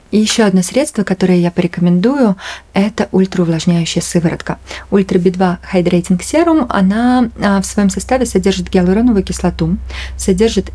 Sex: female